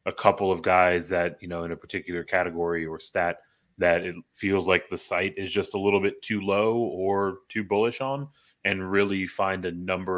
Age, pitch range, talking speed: 30-49, 95-105 Hz, 205 wpm